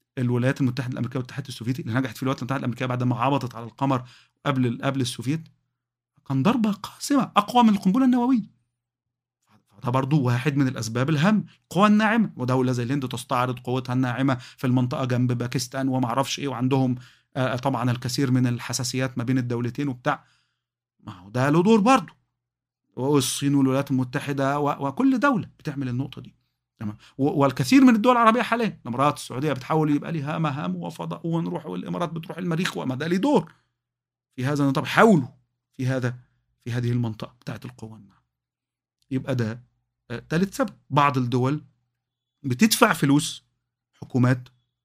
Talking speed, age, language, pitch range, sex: 145 wpm, 40-59, Arabic, 125-160 Hz, male